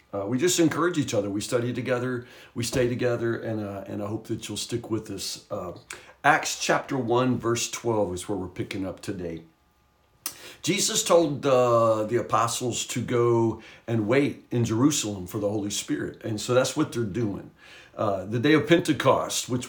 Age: 60-79